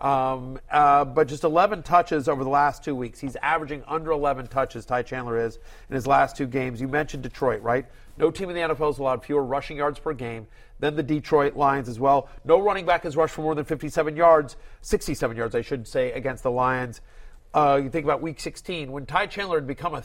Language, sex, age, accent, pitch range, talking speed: English, male, 40-59, American, 135-170 Hz, 225 wpm